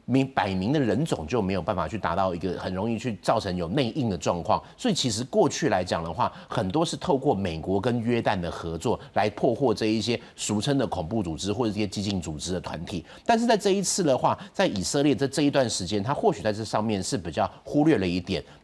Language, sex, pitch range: Chinese, male, 100-140 Hz